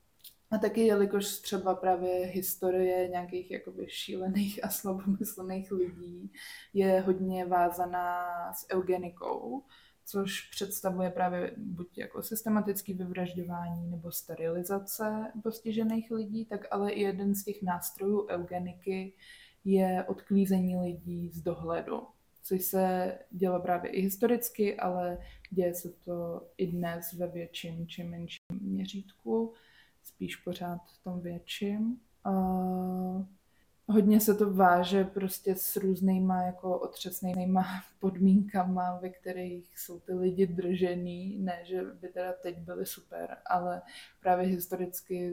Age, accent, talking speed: 20-39, native, 120 wpm